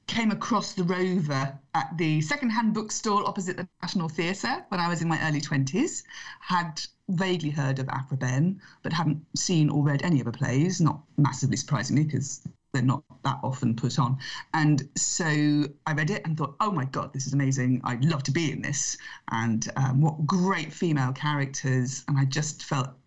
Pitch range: 135-185 Hz